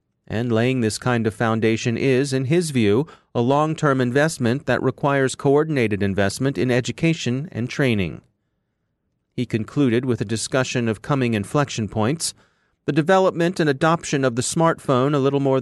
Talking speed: 155 wpm